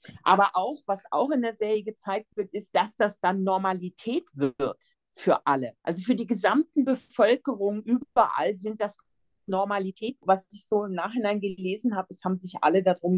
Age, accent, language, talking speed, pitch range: 50-69, German, German, 175 wpm, 155-215 Hz